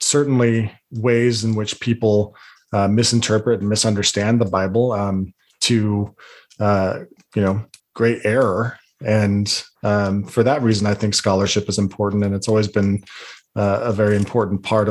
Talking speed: 150 wpm